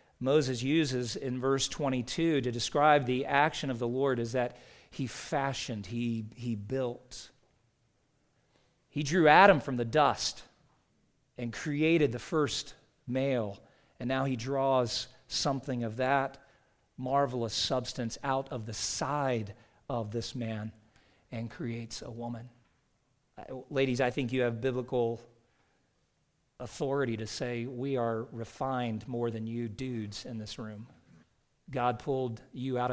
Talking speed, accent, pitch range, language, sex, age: 135 wpm, American, 115-135 Hz, English, male, 40-59